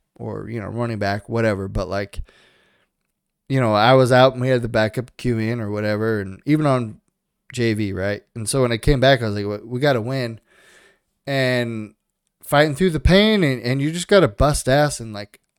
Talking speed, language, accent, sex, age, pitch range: 215 wpm, English, American, male, 20-39, 110-135 Hz